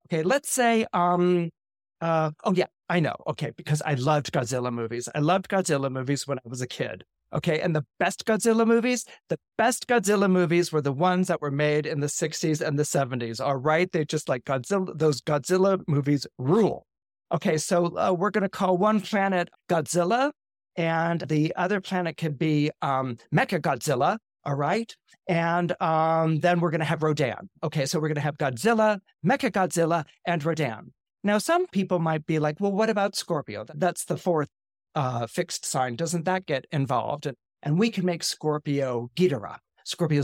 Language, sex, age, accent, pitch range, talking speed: English, male, 40-59, American, 150-190 Hz, 180 wpm